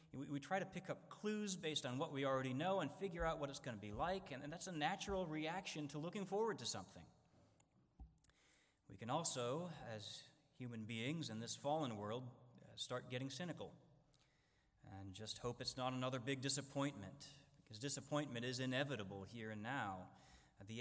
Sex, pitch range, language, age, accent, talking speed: male, 110-145 Hz, English, 30-49, American, 175 wpm